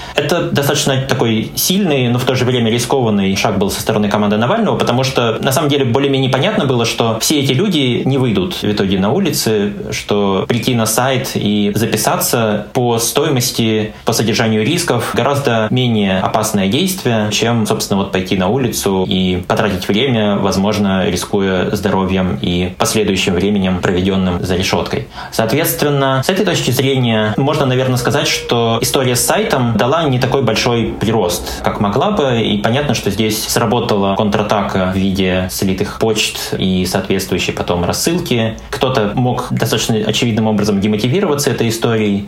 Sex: male